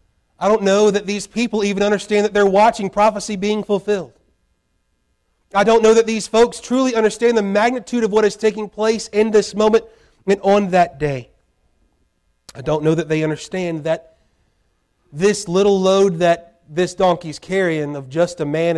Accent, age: American, 30-49